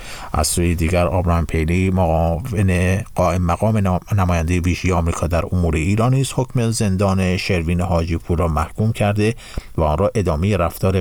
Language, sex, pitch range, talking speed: Persian, male, 85-105 Hz, 140 wpm